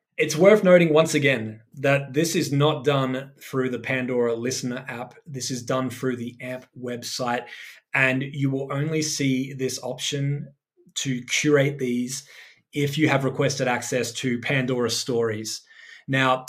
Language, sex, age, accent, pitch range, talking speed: English, male, 20-39, Australian, 120-140 Hz, 150 wpm